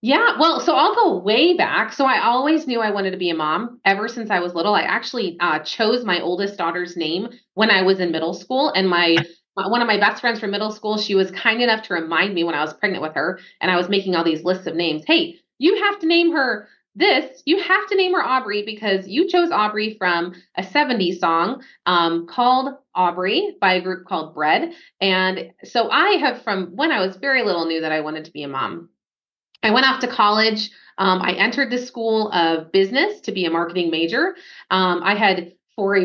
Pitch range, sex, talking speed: 180-245 Hz, female, 230 wpm